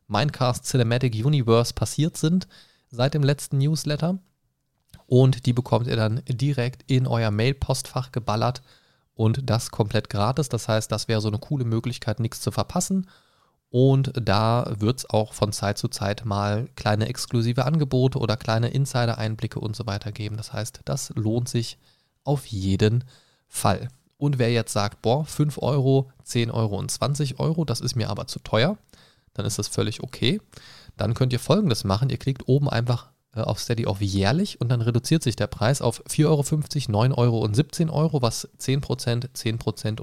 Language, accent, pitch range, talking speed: German, German, 110-135 Hz, 170 wpm